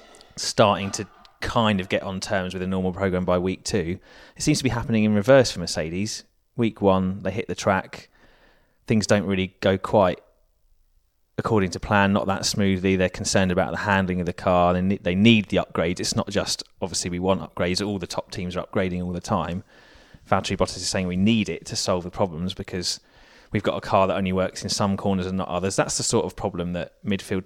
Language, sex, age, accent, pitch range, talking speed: English, male, 30-49, British, 90-100 Hz, 220 wpm